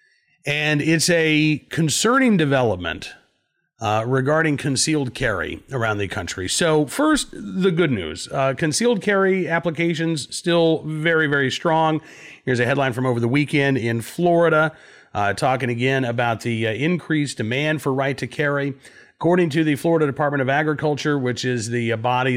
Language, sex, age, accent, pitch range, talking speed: English, male, 40-59, American, 120-160 Hz, 155 wpm